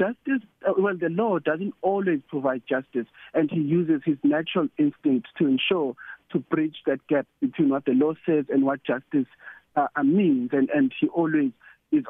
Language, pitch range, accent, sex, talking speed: English, 145-245 Hz, South African, male, 175 wpm